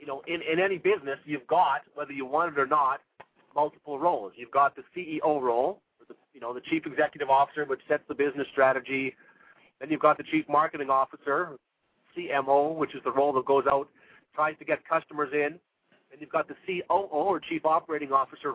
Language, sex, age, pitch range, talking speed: English, male, 40-59, 140-175 Hz, 200 wpm